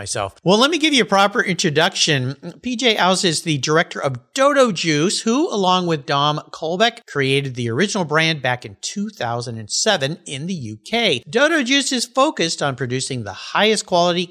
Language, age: English, 50-69